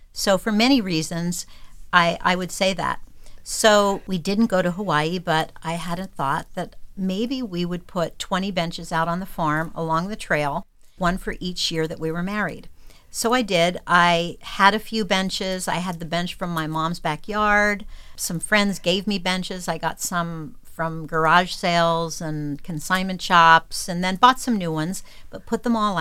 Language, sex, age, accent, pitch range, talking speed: English, female, 50-69, American, 170-220 Hz, 190 wpm